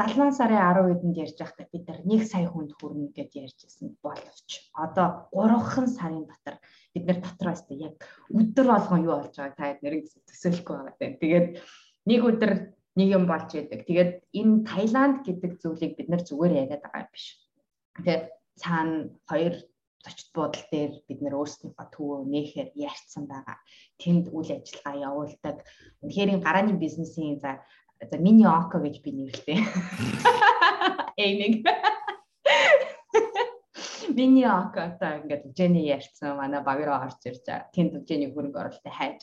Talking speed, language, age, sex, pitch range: 115 wpm, English, 20-39, female, 150-220 Hz